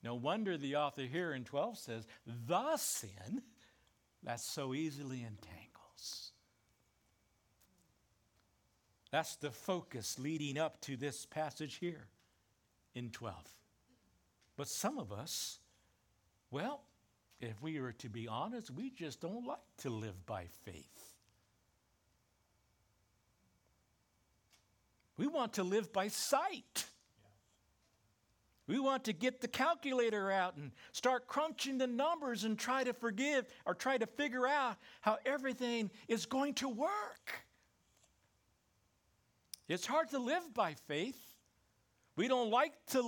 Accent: American